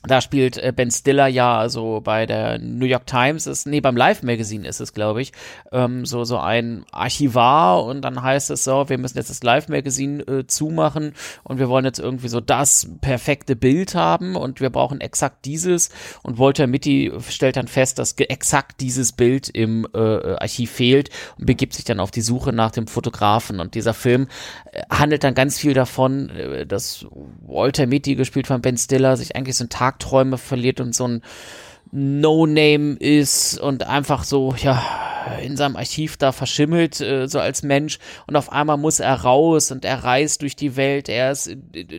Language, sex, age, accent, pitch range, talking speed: German, male, 30-49, German, 125-150 Hz, 190 wpm